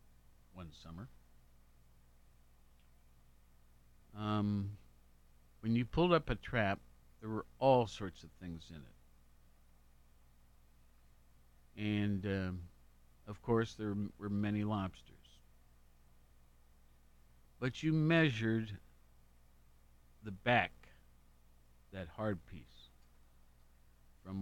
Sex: male